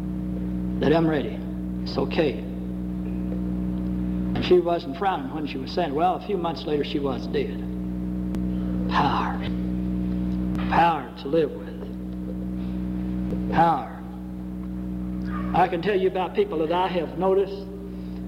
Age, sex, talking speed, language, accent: 60-79, male, 120 wpm, English, American